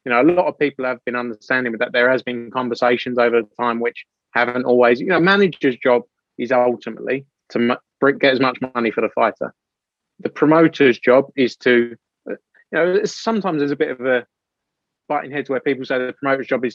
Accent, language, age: British, English, 20-39